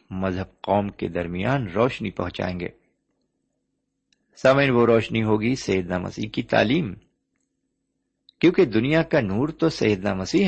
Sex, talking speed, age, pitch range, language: male, 125 wpm, 50-69, 95-135 Hz, Urdu